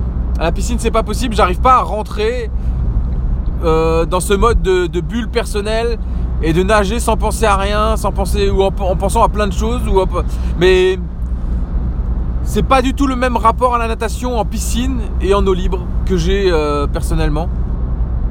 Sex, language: male, French